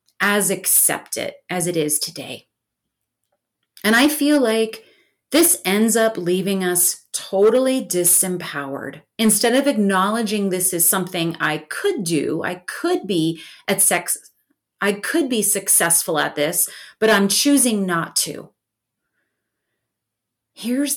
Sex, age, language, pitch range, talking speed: female, 30-49, English, 185-270 Hz, 125 wpm